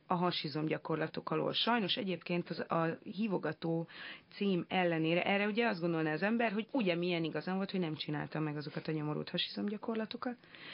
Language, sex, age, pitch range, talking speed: Hungarian, female, 30-49, 160-200 Hz, 160 wpm